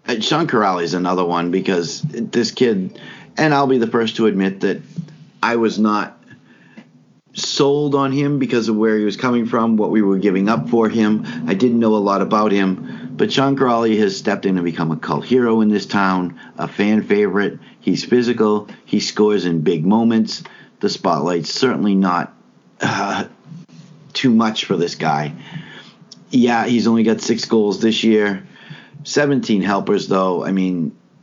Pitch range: 95-120 Hz